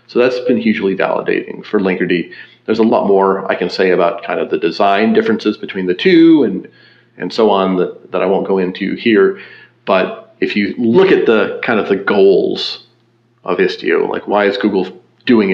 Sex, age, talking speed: male, 40-59, 195 wpm